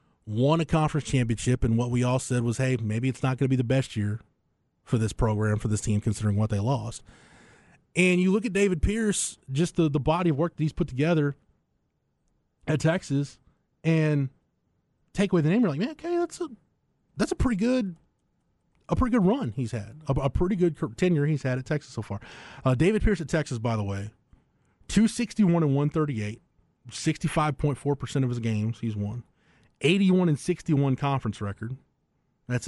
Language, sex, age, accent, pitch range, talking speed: English, male, 30-49, American, 115-155 Hz, 185 wpm